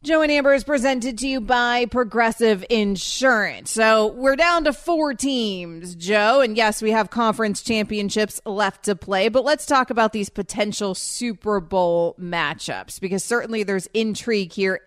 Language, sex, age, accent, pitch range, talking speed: English, female, 30-49, American, 200-245 Hz, 160 wpm